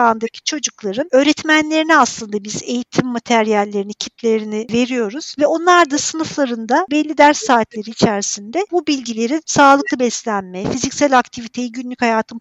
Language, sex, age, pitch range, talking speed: Turkish, female, 50-69, 225-300 Hz, 120 wpm